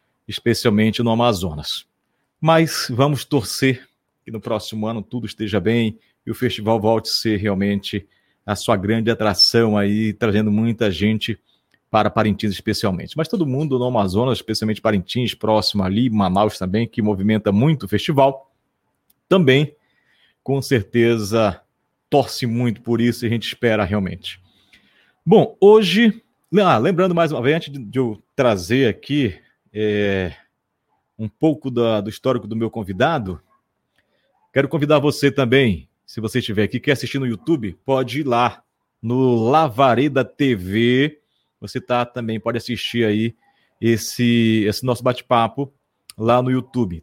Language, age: Portuguese, 40-59